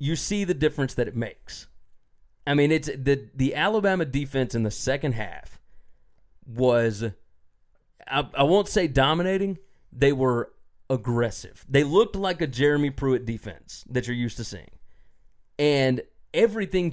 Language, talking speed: English, 145 wpm